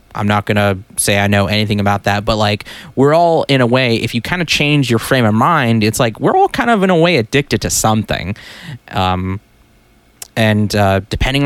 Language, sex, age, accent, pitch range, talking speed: English, male, 20-39, American, 105-130 Hz, 220 wpm